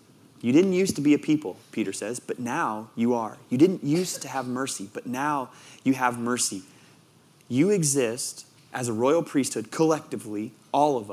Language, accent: English, American